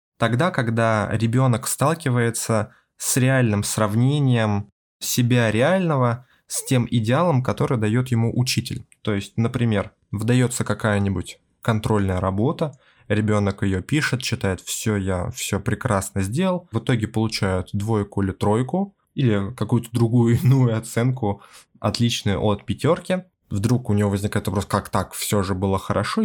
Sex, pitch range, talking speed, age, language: male, 105-130 Hz, 130 wpm, 20-39, Russian